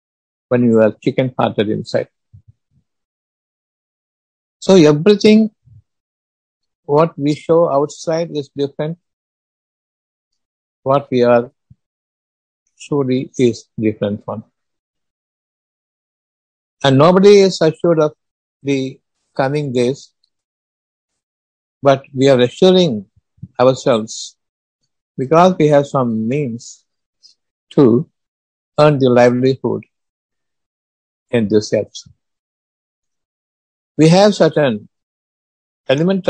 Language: Tamil